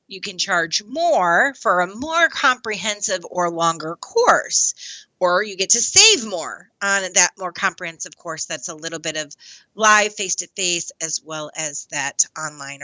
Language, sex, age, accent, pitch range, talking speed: English, female, 30-49, American, 170-235 Hz, 160 wpm